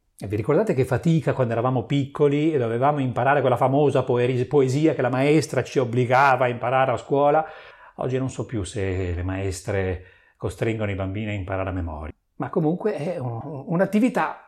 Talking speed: 165 wpm